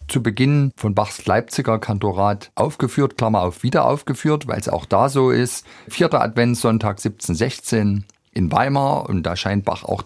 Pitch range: 95-120 Hz